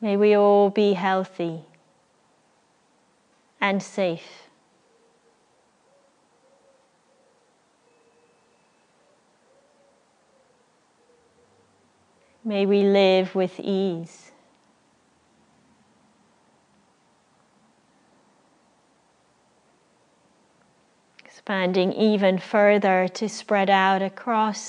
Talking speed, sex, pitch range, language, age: 45 wpm, female, 185-210 Hz, English, 30-49